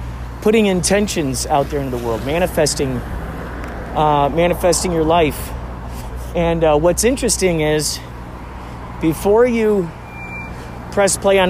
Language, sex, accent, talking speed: English, male, American, 115 wpm